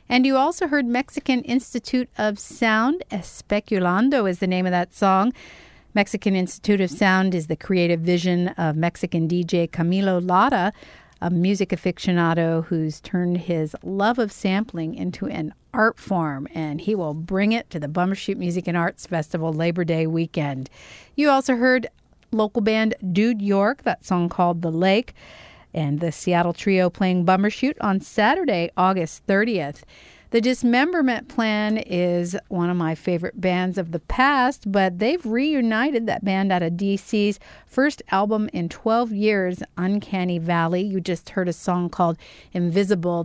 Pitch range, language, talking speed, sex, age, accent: 170-215 Hz, English, 155 wpm, female, 50-69, American